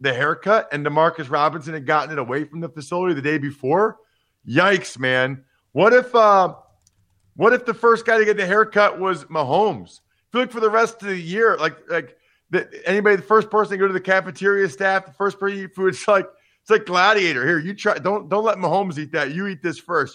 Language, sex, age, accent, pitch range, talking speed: English, male, 40-59, American, 145-195 Hz, 230 wpm